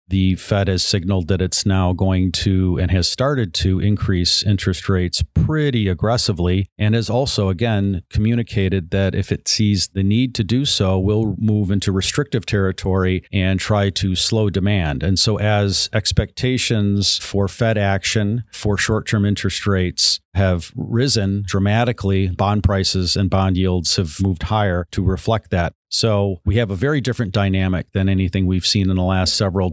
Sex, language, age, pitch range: male, English, 50-69, 95-105 Hz